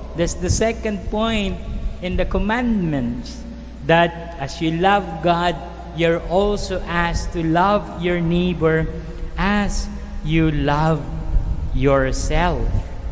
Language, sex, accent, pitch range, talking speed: English, male, Filipino, 115-165 Hz, 105 wpm